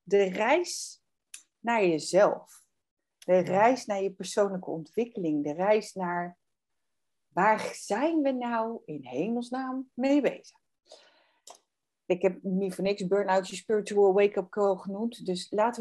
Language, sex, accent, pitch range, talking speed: Dutch, female, Dutch, 185-245 Hz, 130 wpm